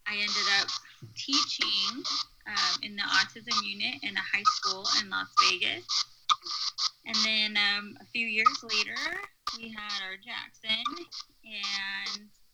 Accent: American